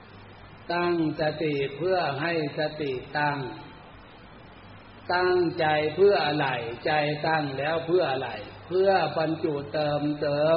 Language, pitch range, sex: Thai, 110-160 Hz, male